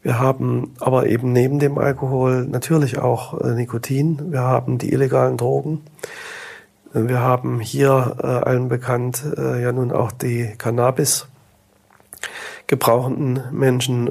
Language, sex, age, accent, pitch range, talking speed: German, male, 40-59, German, 120-140 Hz, 130 wpm